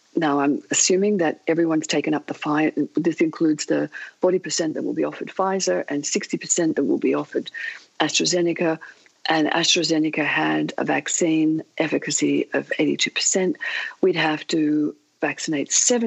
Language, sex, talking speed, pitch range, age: English, female, 140 wpm, 150-210 Hz, 50-69